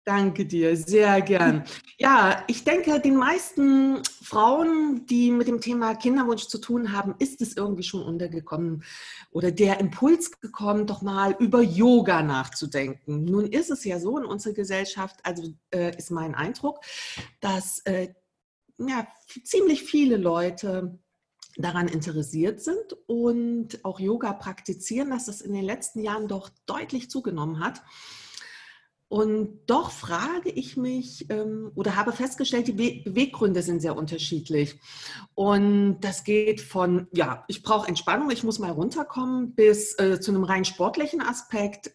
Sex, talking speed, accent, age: female, 145 wpm, German, 40-59